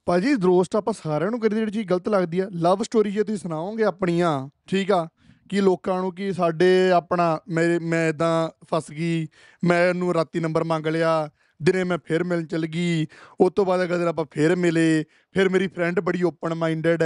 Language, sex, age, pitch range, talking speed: Punjabi, male, 20-39, 160-205 Hz, 195 wpm